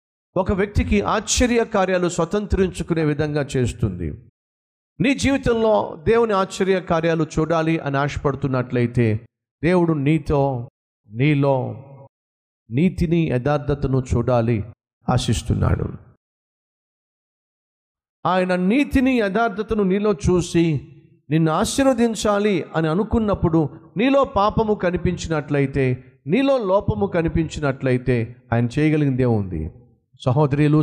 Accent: native